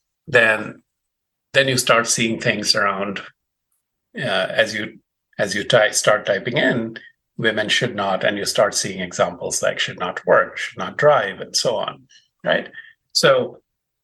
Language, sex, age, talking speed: English, male, 50-69, 155 wpm